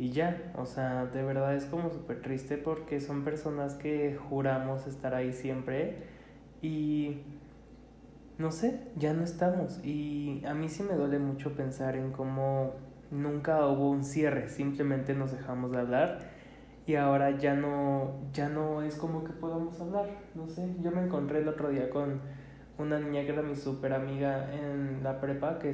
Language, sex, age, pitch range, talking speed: Spanish, male, 20-39, 135-155 Hz, 170 wpm